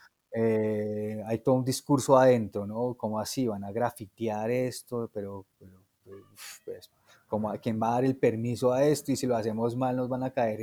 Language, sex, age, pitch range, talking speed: English, male, 30-49, 105-130 Hz, 190 wpm